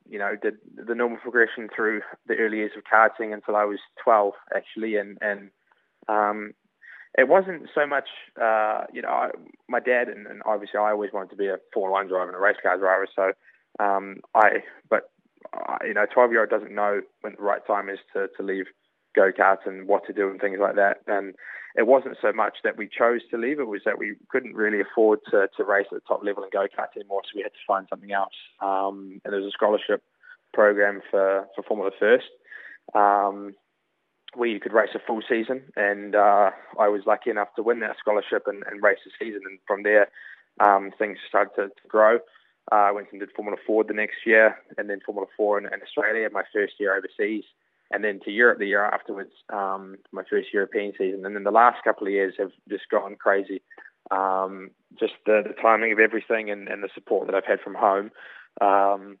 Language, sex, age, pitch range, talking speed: English, male, 20-39, 100-110 Hz, 215 wpm